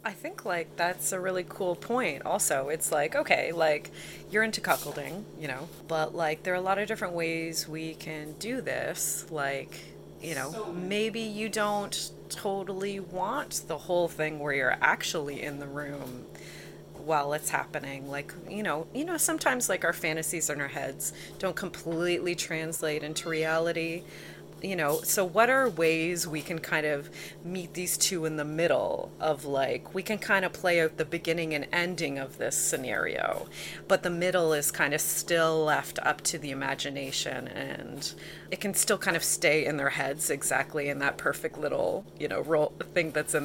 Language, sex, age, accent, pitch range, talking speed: English, female, 30-49, American, 150-185 Hz, 180 wpm